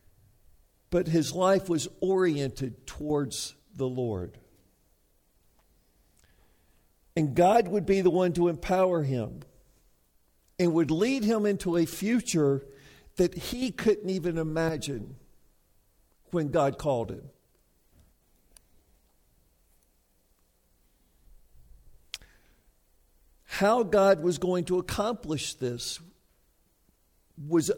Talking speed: 90 wpm